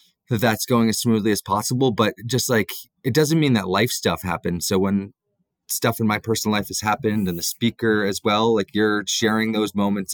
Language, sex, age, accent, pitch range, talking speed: English, male, 30-49, American, 95-115 Hz, 215 wpm